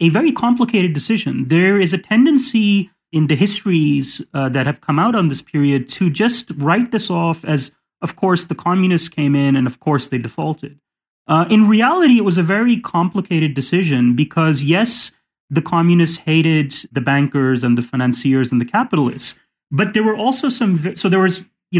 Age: 30-49